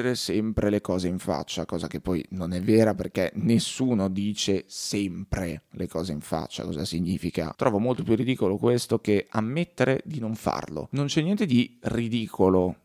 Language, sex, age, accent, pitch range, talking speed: Italian, male, 30-49, native, 100-125 Hz, 170 wpm